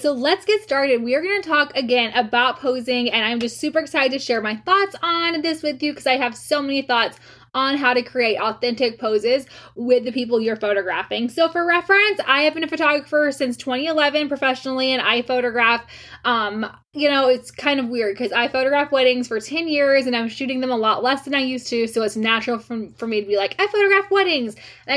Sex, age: female, 10-29